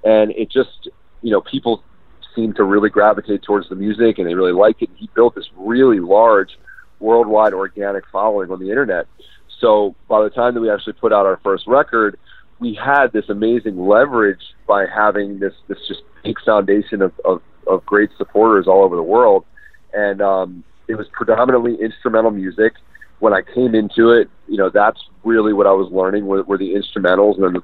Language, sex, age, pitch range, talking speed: English, male, 40-59, 100-125 Hz, 195 wpm